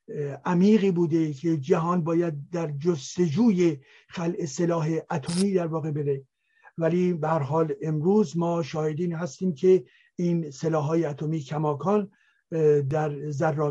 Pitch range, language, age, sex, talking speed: 165-200 Hz, Persian, 60-79, male, 115 wpm